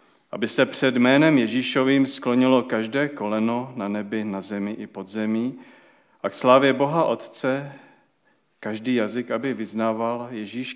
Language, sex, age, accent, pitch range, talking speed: Czech, male, 40-59, native, 110-135 Hz, 140 wpm